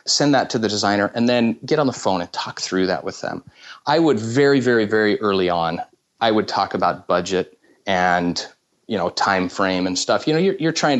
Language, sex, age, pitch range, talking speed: English, male, 30-49, 100-125 Hz, 225 wpm